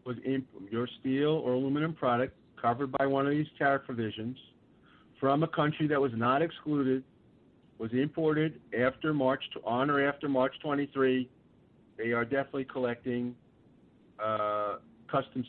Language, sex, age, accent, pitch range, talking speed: English, male, 50-69, American, 120-150 Hz, 145 wpm